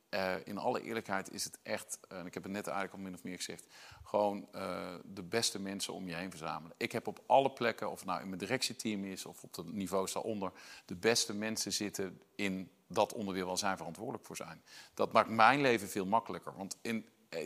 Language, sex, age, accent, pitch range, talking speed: English, male, 50-69, Dutch, 95-120 Hz, 225 wpm